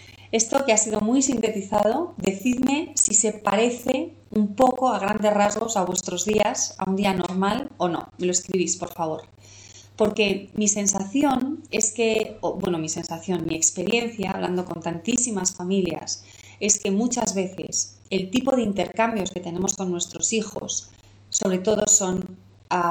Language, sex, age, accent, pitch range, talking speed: Spanish, female, 30-49, Spanish, 170-220 Hz, 160 wpm